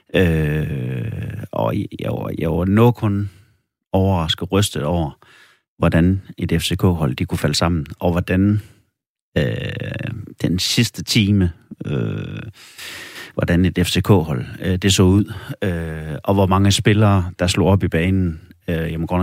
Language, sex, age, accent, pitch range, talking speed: Danish, male, 30-49, native, 85-110 Hz, 145 wpm